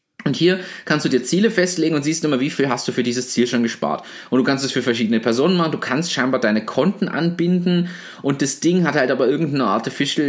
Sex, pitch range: male, 125-165 Hz